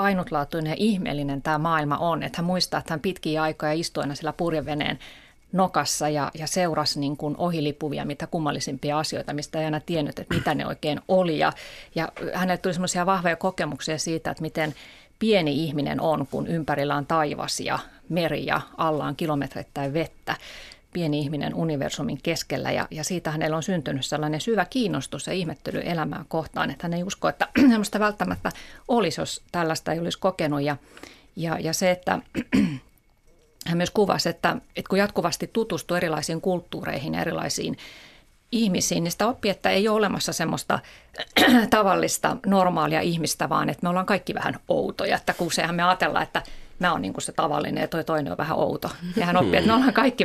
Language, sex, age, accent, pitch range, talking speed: Finnish, female, 30-49, native, 150-190 Hz, 175 wpm